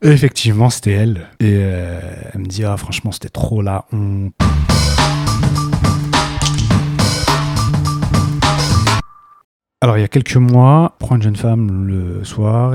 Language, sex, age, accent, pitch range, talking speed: French, male, 40-59, French, 100-125 Hz, 130 wpm